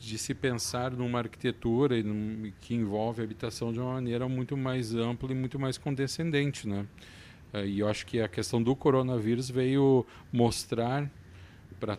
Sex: male